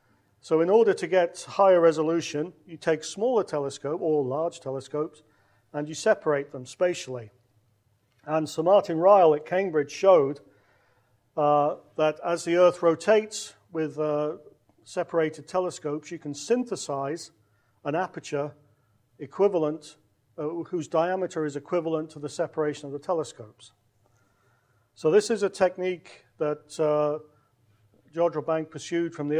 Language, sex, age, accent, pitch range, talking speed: English, male, 40-59, British, 135-180 Hz, 135 wpm